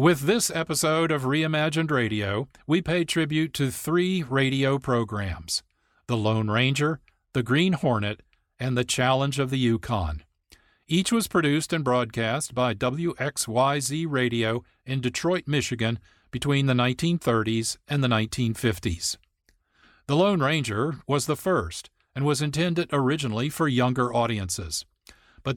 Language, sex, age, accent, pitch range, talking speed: English, male, 50-69, American, 115-155 Hz, 130 wpm